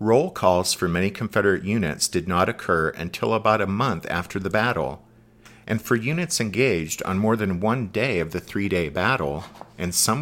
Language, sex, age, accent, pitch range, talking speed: English, male, 50-69, American, 90-115 Hz, 180 wpm